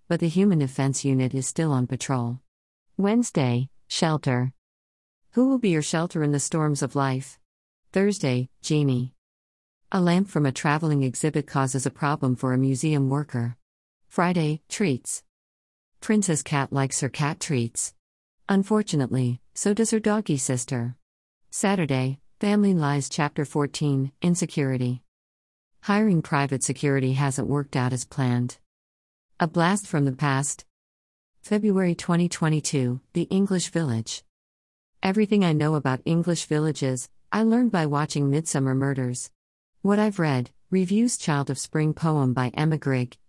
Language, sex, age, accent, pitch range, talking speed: English, female, 50-69, American, 125-170 Hz, 135 wpm